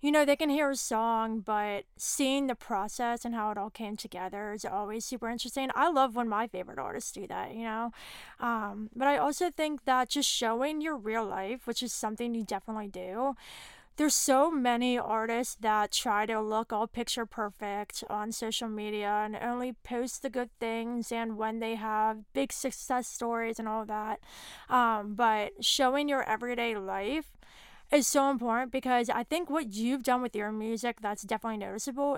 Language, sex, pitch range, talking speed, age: English, female, 220-265 Hz, 185 wpm, 20-39